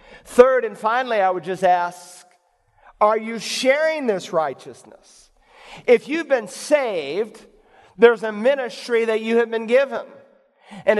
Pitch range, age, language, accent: 230-275 Hz, 50-69, English, American